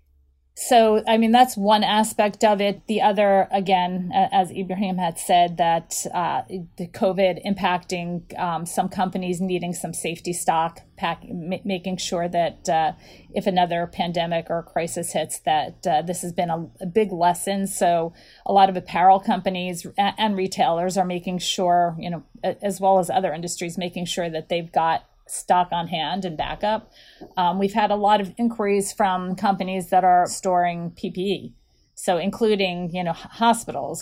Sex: female